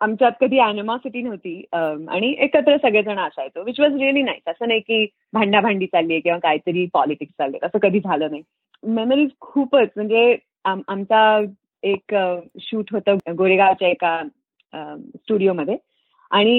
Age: 30-49